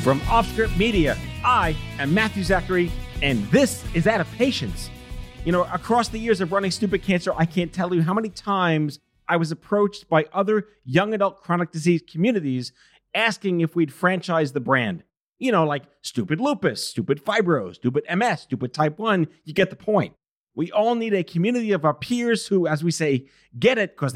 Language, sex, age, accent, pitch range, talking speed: English, male, 40-59, American, 160-215 Hz, 190 wpm